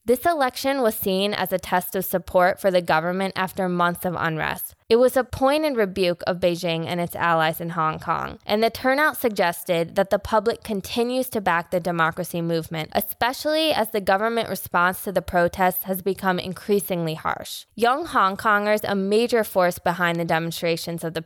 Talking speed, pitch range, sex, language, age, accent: 185 wpm, 175-215 Hz, female, English, 20-39, American